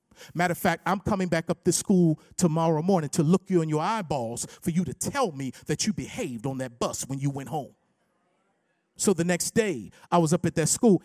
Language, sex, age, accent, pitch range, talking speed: English, male, 40-59, American, 165-200 Hz, 230 wpm